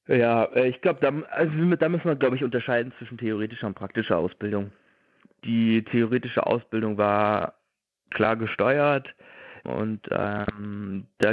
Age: 20-39